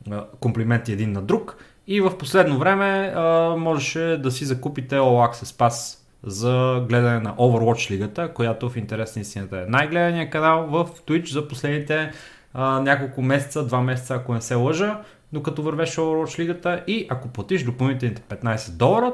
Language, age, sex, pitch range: Bulgarian, 30-49, male, 115-155 Hz